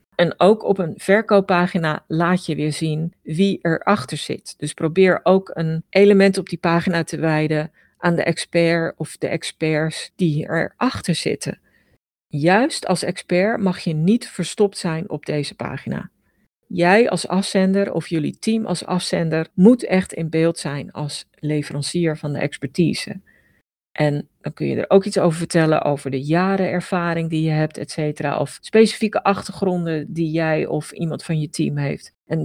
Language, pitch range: Dutch, 160-205 Hz